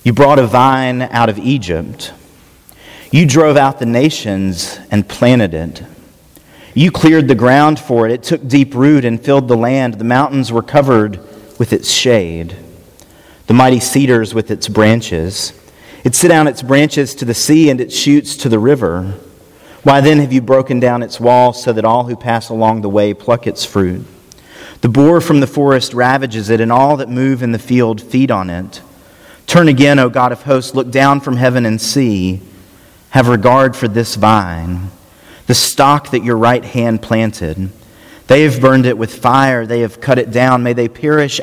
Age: 40-59